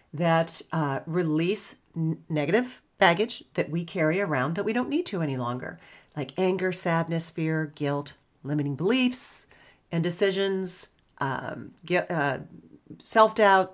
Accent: American